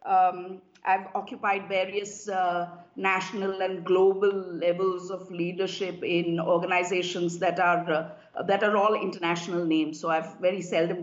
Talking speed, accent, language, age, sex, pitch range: 135 wpm, Indian, English, 50-69, female, 175-205 Hz